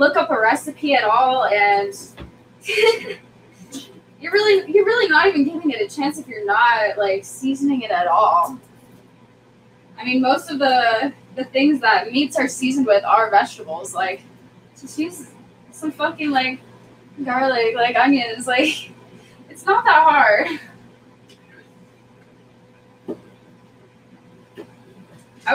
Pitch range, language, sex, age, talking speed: 215-300 Hz, English, female, 10-29, 125 wpm